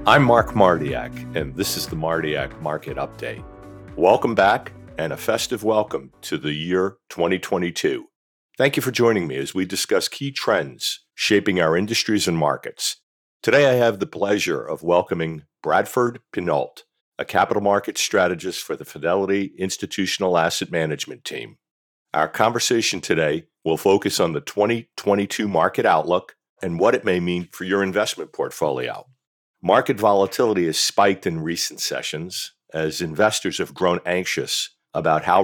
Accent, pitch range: American, 85-110 Hz